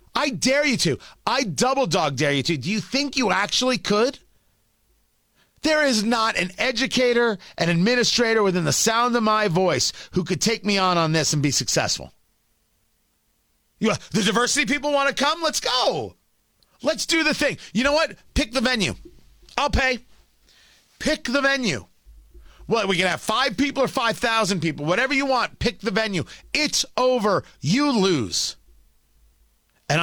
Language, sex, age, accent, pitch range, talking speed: English, male, 40-59, American, 175-255 Hz, 160 wpm